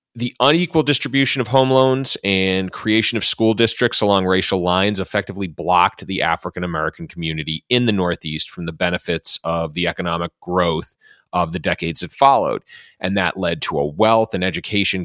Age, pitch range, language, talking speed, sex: 30-49, 85-120 Hz, English, 170 wpm, male